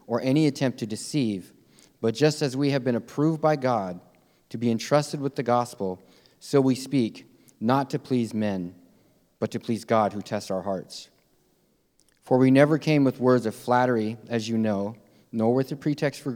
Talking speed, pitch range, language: 185 wpm, 100-130 Hz, English